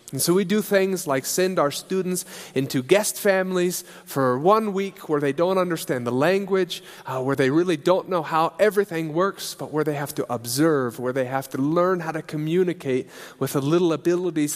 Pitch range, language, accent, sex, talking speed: 140-185 Hz, English, American, male, 200 wpm